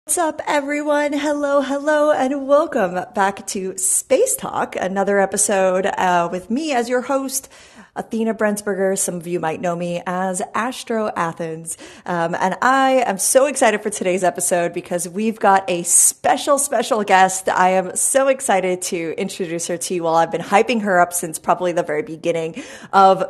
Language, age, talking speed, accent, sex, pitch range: English, 30-49, 175 wpm, American, female, 185-265 Hz